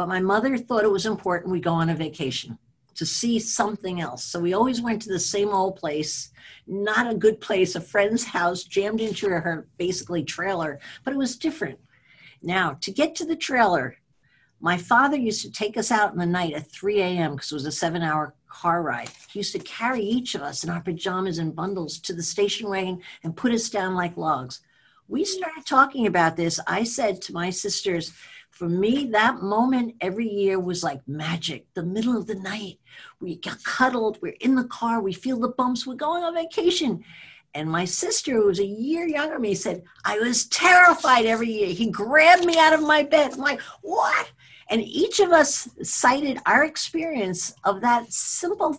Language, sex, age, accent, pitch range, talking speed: English, female, 60-79, American, 170-245 Hz, 200 wpm